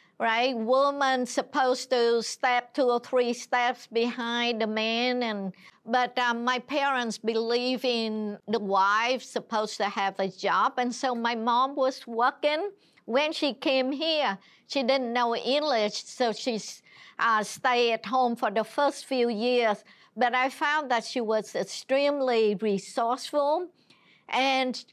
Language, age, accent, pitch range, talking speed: English, 60-79, American, 215-265 Hz, 145 wpm